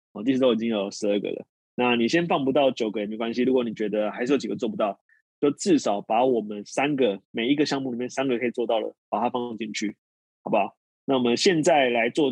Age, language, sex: 20-39, Chinese, male